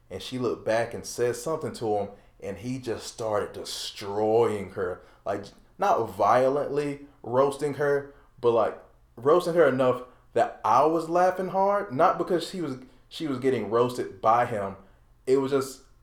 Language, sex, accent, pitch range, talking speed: English, male, American, 105-140 Hz, 155 wpm